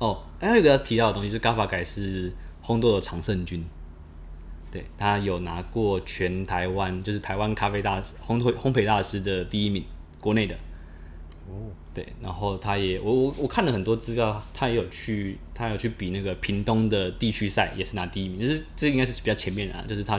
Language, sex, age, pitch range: Chinese, male, 20-39, 90-110 Hz